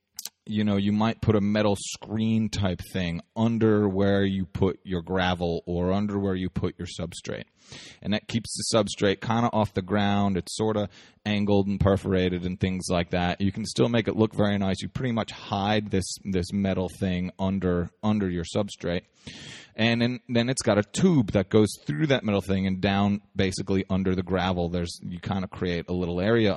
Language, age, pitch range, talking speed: English, 30-49, 95-110 Hz, 205 wpm